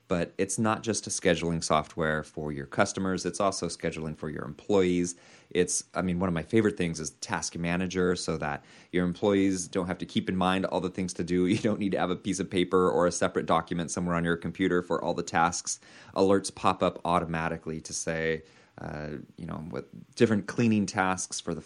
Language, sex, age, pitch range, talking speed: English, male, 30-49, 85-100 Hz, 215 wpm